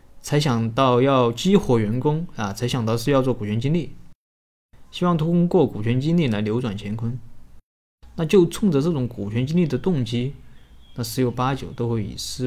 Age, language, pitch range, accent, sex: 20-39, Chinese, 105-135 Hz, native, male